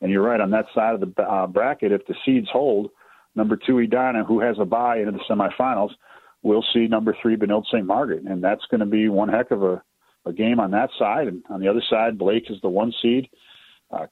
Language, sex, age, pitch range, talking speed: English, male, 40-59, 105-140 Hz, 240 wpm